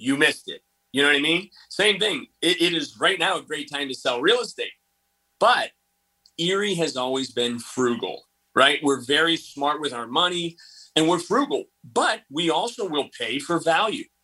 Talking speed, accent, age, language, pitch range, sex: 190 wpm, American, 30-49, English, 125-170 Hz, male